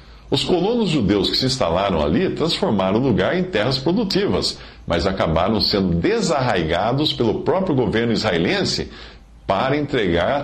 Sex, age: male, 50-69